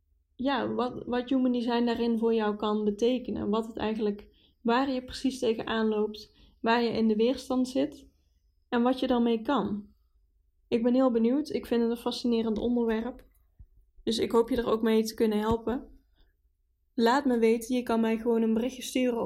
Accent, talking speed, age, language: Dutch, 185 wpm, 10-29, Dutch